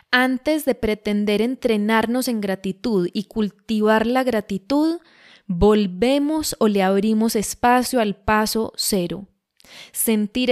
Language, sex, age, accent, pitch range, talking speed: Spanish, female, 10-29, Colombian, 200-230 Hz, 110 wpm